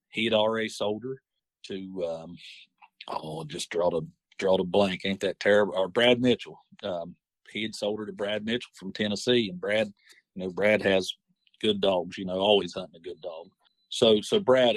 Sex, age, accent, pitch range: male, 50-69, American, 95-115 Hz